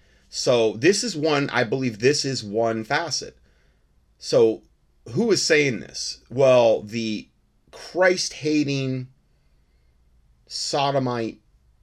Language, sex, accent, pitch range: English, male, American, 90-120 Hz